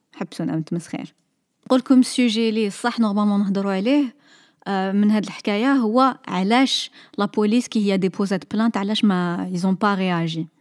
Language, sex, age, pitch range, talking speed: Arabic, female, 20-39, 190-235 Hz, 145 wpm